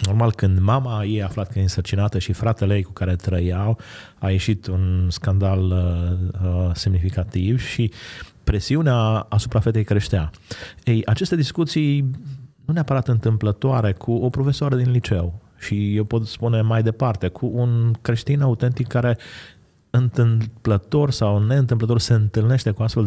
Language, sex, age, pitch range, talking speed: Romanian, male, 30-49, 105-135 Hz, 145 wpm